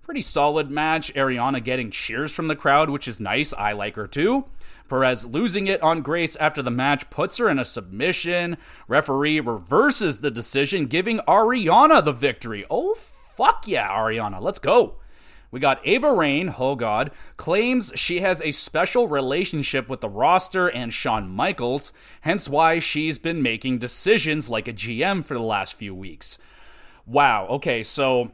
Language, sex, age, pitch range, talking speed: English, male, 30-49, 125-170 Hz, 165 wpm